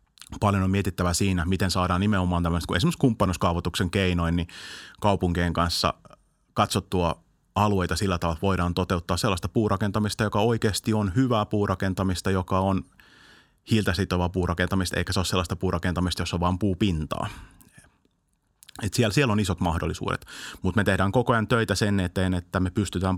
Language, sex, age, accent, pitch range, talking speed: Finnish, male, 30-49, native, 85-95 Hz, 150 wpm